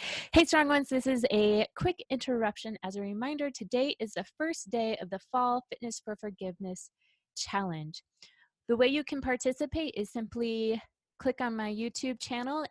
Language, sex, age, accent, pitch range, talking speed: English, female, 20-39, American, 200-250 Hz, 165 wpm